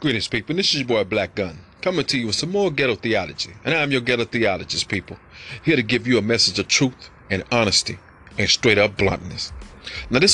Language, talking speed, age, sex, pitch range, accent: English, 230 wpm, 30-49, male, 105-130 Hz, American